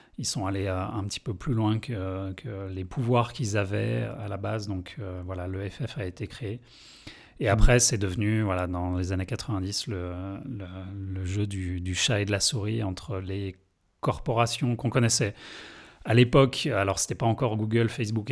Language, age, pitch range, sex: French, 30-49, 95-115 Hz, male